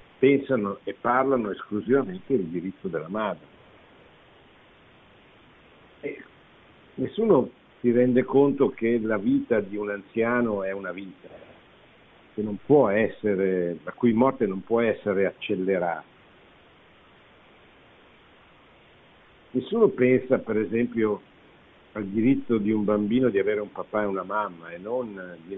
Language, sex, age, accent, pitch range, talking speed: Italian, male, 50-69, native, 95-120 Hz, 120 wpm